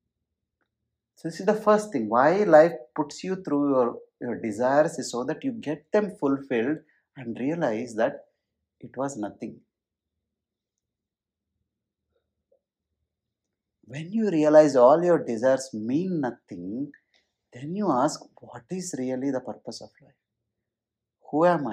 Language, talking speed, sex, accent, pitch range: English, 130 wpm, male, Indian, 110-160 Hz